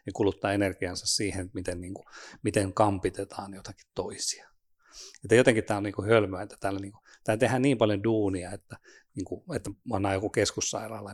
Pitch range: 95-110 Hz